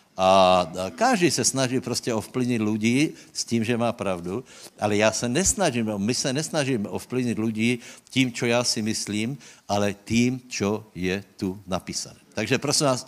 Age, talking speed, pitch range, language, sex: 60-79, 155 wpm, 115-150 Hz, Slovak, male